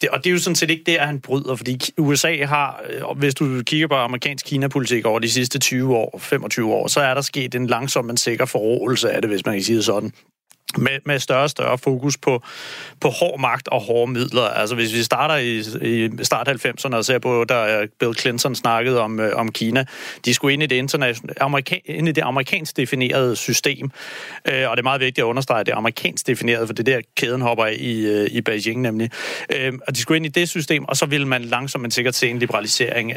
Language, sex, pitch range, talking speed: Danish, male, 120-140 Hz, 230 wpm